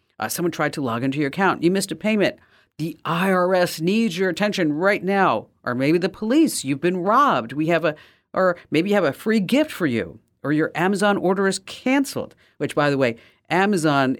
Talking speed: 205 wpm